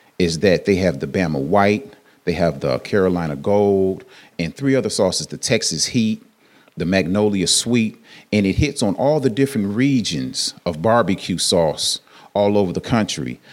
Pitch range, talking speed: 85-105 Hz, 165 wpm